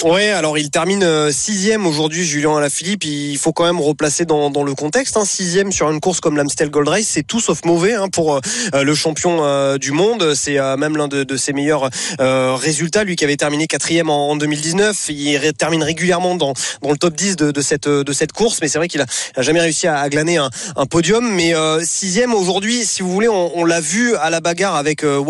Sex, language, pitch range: male, French, 150-190 Hz